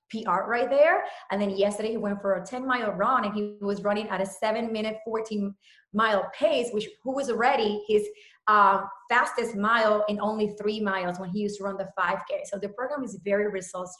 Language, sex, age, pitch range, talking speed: English, female, 30-49, 195-235 Hz, 210 wpm